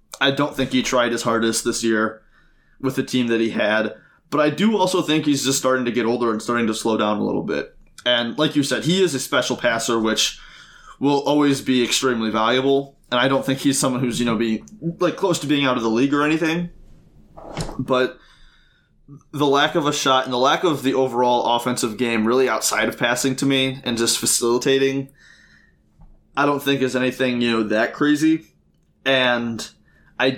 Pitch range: 115-140 Hz